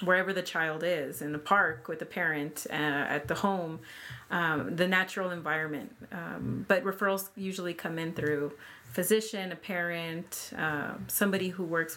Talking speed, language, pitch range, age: 160 wpm, English, 160-185 Hz, 30-49